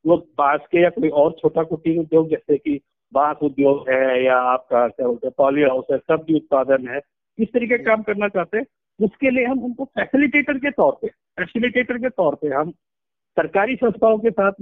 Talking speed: 190 wpm